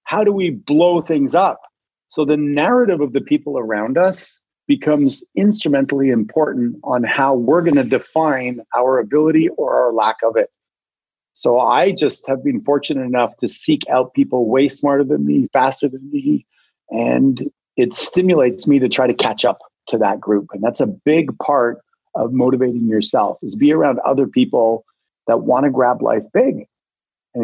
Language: English